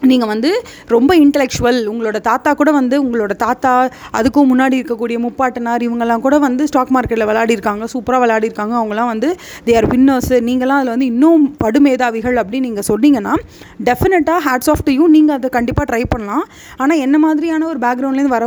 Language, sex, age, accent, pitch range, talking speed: Tamil, female, 30-49, native, 240-295 Hz, 160 wpm